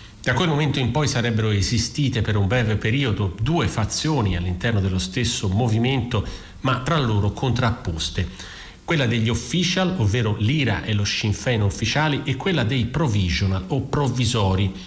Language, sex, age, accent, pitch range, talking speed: Italian, male, 40-59, native, 105-130 Hz, 145 wpm